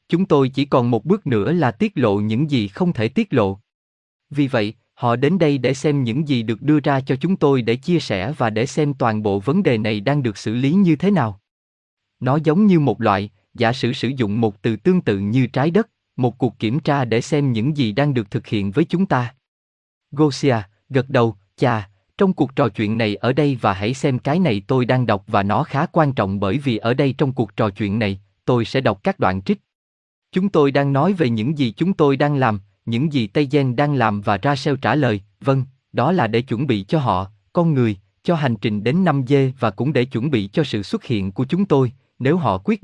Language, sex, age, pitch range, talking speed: Vietnamese, male, 20-39, 110-145 Hz, 240 wpm